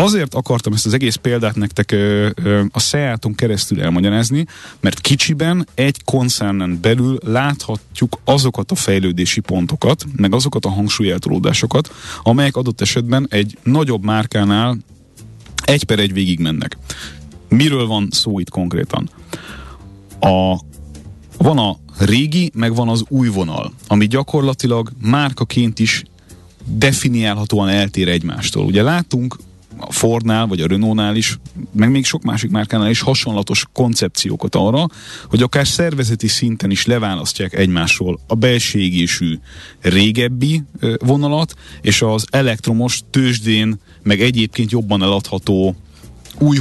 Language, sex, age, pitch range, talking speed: Hungarian, male, 30-49, 100-130 Hz, 125 wpm